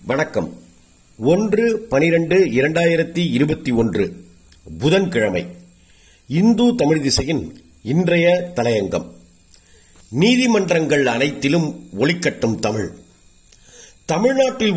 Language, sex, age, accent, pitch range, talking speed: Tamil, male, 50-69, native, 125-195 Hz, 70 wpm